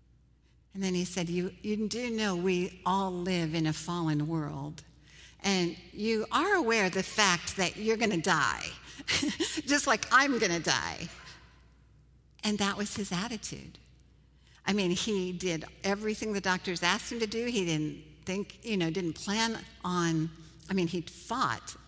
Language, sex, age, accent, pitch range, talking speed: English, female, 60-79, American, 165-210 Hz, 160 wpm